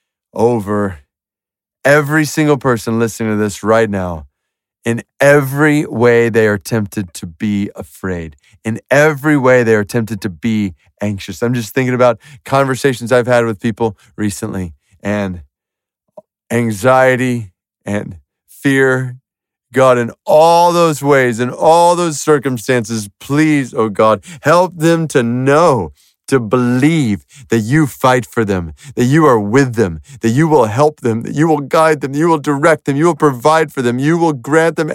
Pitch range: 110-150 Hz